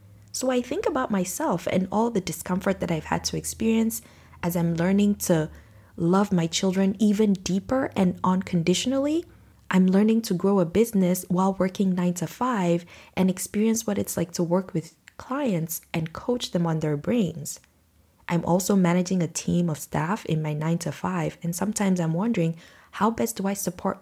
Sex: female